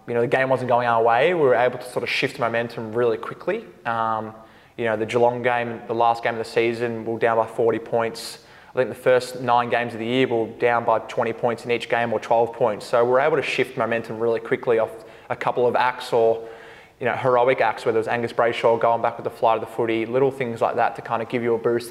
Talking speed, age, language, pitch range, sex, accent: 275 wpm, 20-39, English, 115-125 Hz, male, Australian